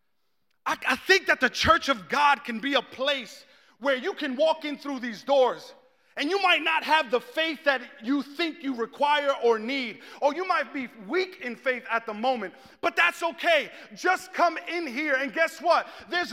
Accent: American